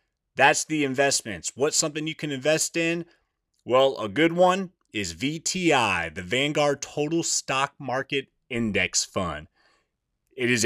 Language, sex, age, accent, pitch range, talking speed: English, male, 30-49, American, 110-145 Hz, 135 wpm